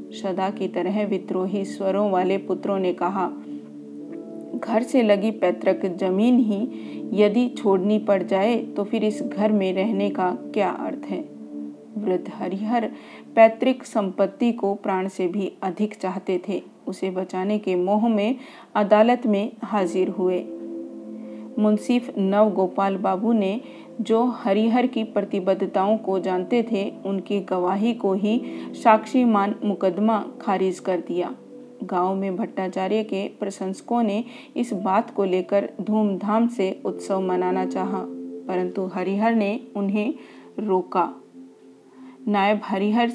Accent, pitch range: native, 185-220 Hz